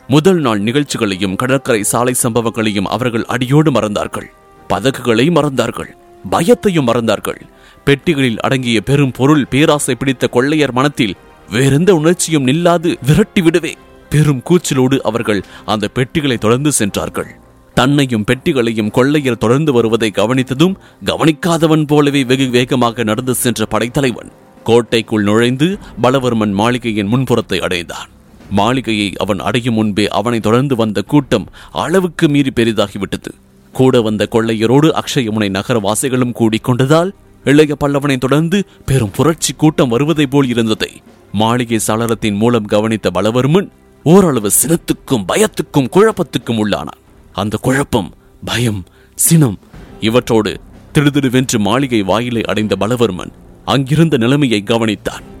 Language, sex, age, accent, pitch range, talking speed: English, male, 30-49, Indian, 110-145 Hz, 105 wpm